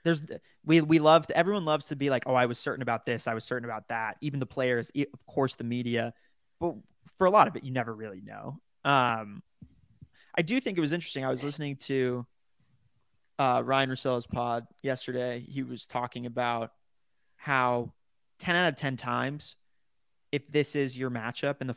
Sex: male